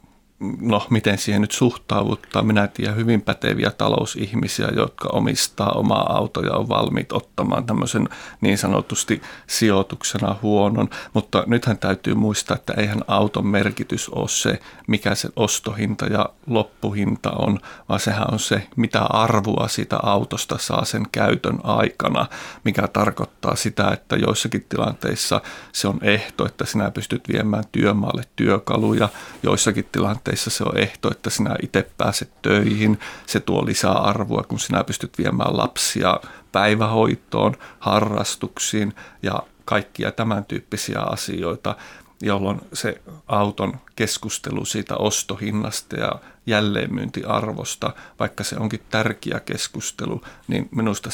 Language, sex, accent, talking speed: Finnish, male, native, 125 wpm